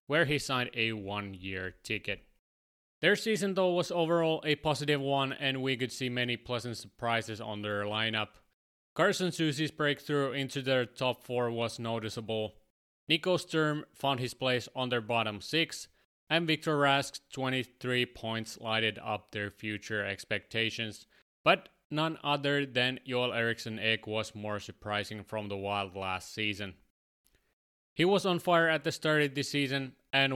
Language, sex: English, male